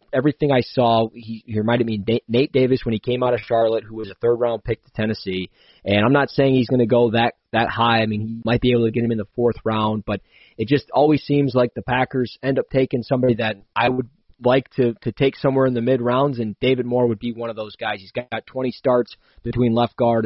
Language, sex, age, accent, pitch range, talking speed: English, male, 20-39, American, 110-125 Hz, 260 wpm